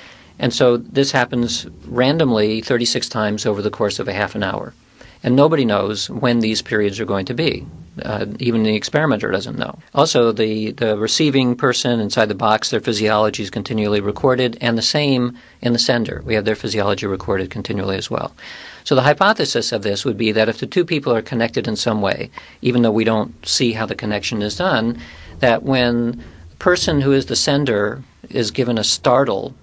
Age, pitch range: 50-69, 105-125 Hz